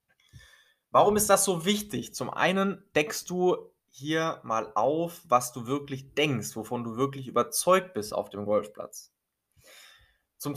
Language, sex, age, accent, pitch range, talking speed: German, male, 20-39, German, 115-150 Hz, 140 wpm